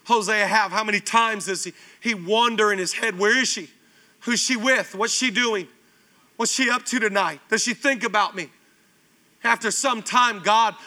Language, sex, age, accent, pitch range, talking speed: English, male, 40-59, American, 195-235 Hz, 195 wpm